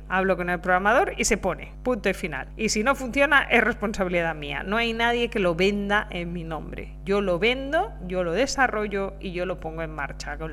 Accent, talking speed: Spanish, 220 wpm